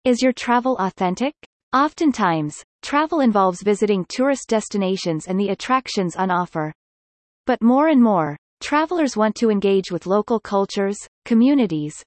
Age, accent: 30-49, American